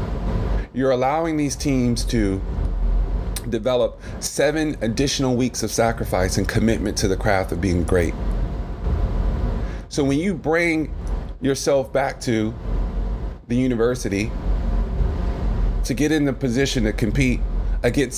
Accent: American